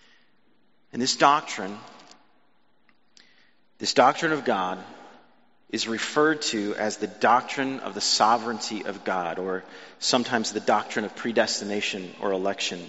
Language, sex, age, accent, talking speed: English, male, 30-49, American, 120 wpm